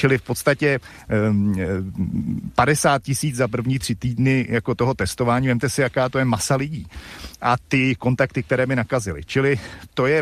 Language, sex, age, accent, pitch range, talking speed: Czech, male, 40-59, native, 110-135 Hz, 170 wpm